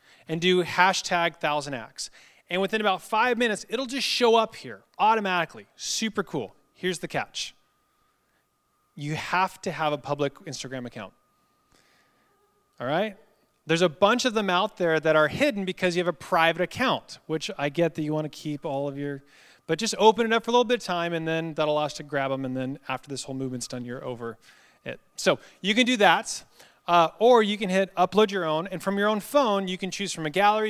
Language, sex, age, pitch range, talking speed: English, male, 30-49, 155-210 Hz, 215 wpm